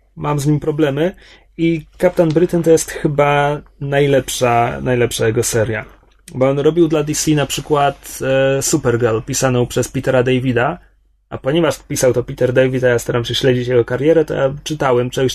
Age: 30-49